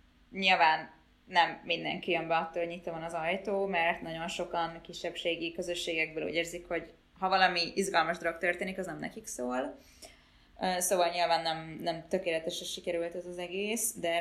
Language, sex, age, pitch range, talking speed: Hungarian, female, 20-39, 170-195 Hz, 160 wpm